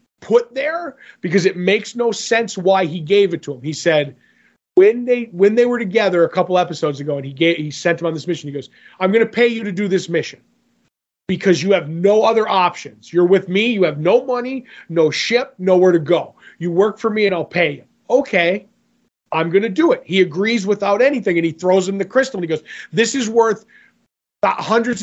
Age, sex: 30-49, male